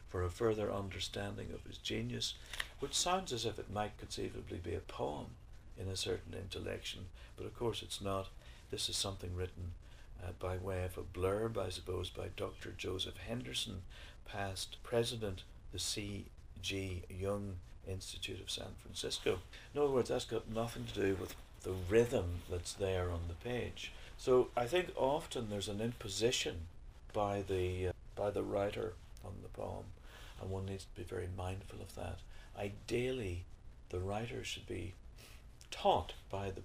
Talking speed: 160 wpm